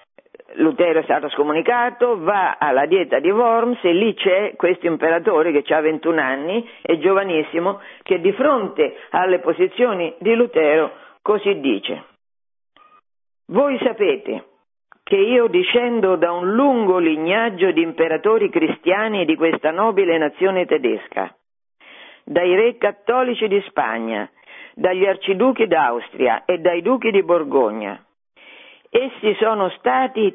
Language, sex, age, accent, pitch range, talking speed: Italian, female, 50-69, native, 165-255 Hz, 125 wpm